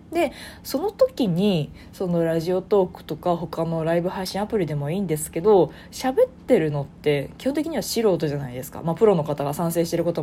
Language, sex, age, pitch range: Japanese, female, 20-39, 160-265 Hz